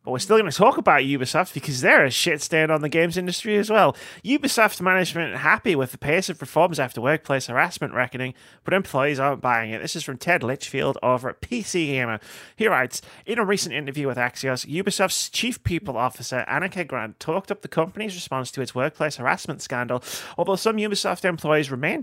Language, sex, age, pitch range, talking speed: English, male, 30-49, 125-175 Hz, 200 wpm